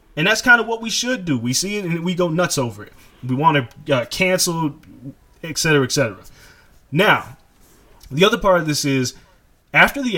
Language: English